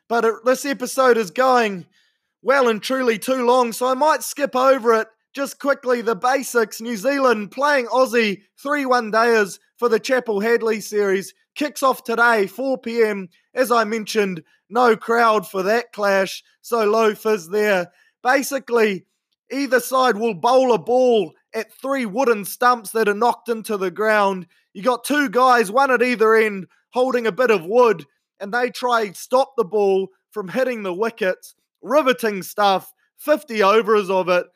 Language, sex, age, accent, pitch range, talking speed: English, male, 20-39, Australian, 200-250 Hz, 160 wpm